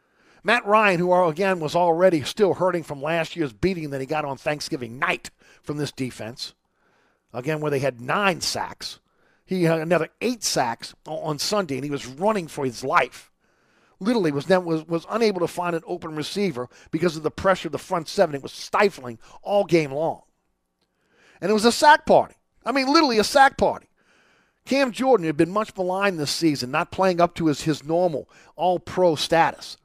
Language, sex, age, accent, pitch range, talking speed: English, male, 50-69, American, 150-190 Hz, 185 wpm